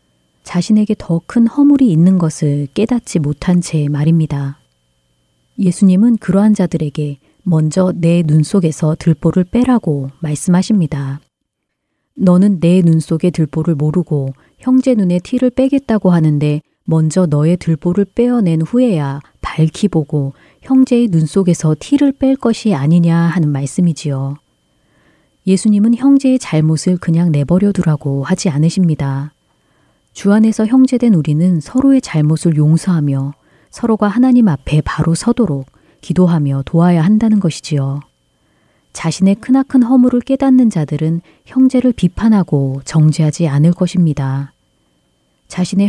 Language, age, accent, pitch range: Korean, 40-59, native, 150-215 Hz